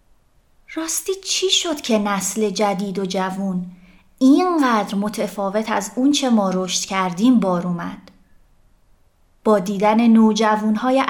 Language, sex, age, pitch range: Persian, female, 30-49, 205-270 Hz